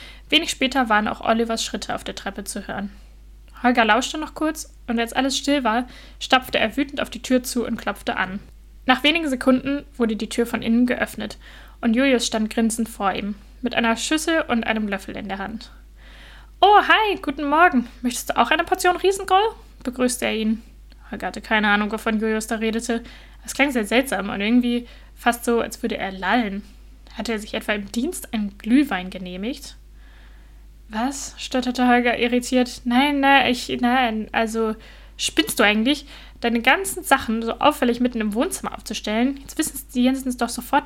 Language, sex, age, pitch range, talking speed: German, female, 10-29, 220-275 Hz, 180 wpm